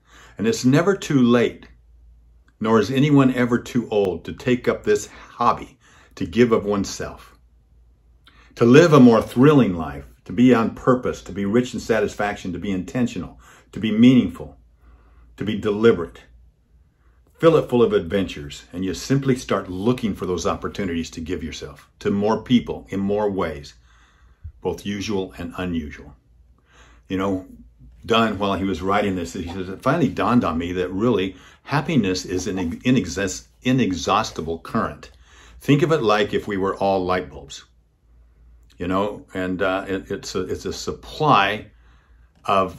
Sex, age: male, 50-69